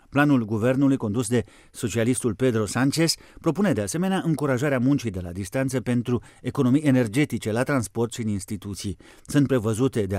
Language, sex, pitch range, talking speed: Romanian, male, 115-145 Hz, 155 wpm